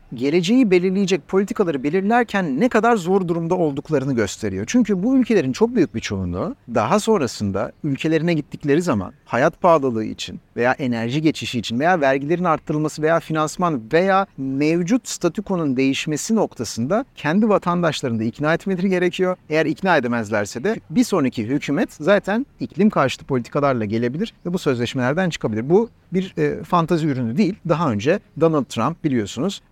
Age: 50-69